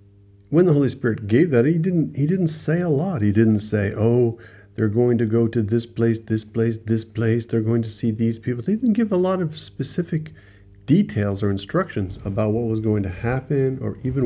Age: 50-69